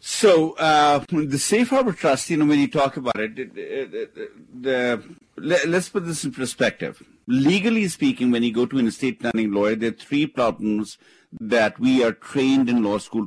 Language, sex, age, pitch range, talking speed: English, male, 50-69, 110-150 Hz, 175 wpm